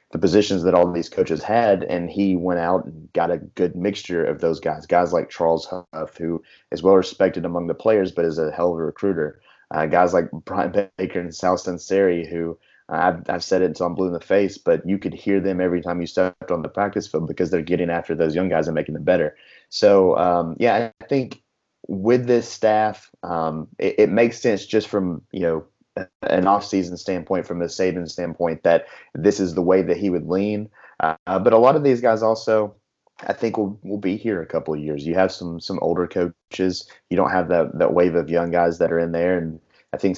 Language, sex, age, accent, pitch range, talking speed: English, male, 30-49, American, 85-100 Hz, 225 wpm